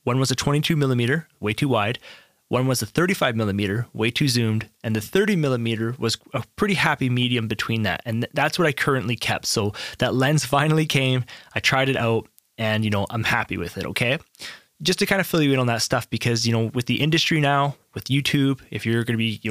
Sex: male